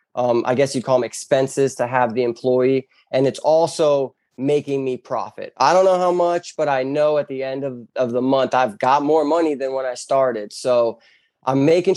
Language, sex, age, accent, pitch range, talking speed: English, male, 20-39, American, 125-145 Hz, 215 wpm